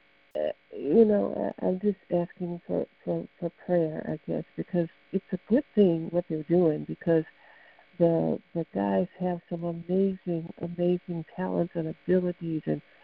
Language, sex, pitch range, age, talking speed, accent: English, female, 160-190 Hz, 60-79, 145 wpm, American